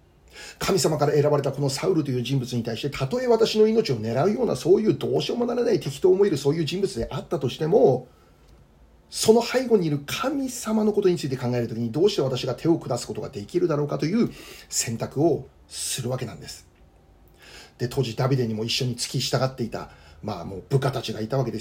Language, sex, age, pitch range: Japanese, male, 40-59, 110-155 Hz